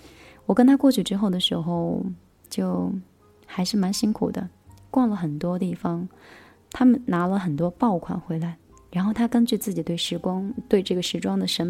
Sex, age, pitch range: female, 20-39, 175-215 Hz